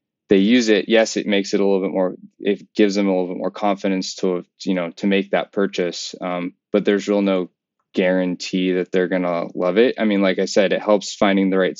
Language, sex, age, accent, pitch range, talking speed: English, male, 10-29, American, 95-105 Hz, 245 wpm